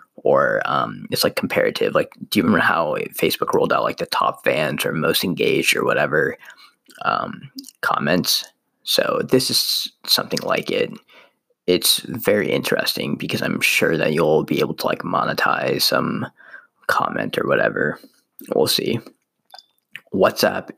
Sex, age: male, 20-39